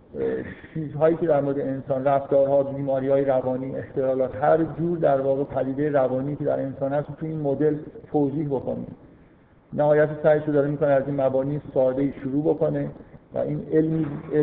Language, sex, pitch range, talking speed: Persian, male, 130-150 Hz, 165 wpm